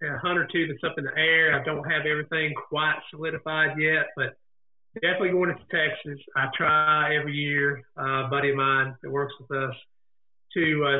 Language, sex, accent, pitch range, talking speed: English, male, American, 140-155 Hz, 195 wpm